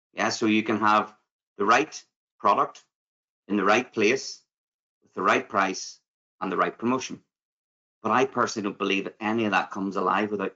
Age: 30-49